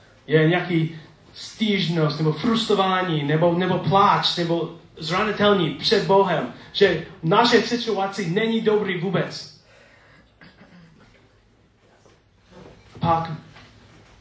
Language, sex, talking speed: Czech, male, 85 wpm